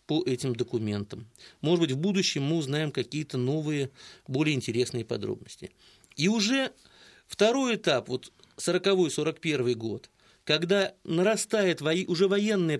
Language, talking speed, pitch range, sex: English, 120 wpm, 130-195 Hz, male